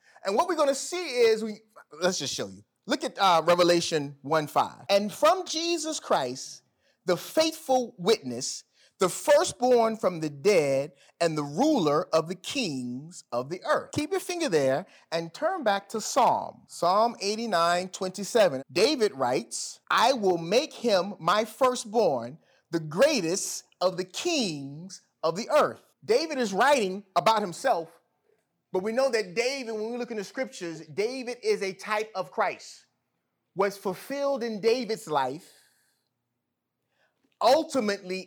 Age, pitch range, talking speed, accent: 30-49, 160-230 Hz, 145 wpm, American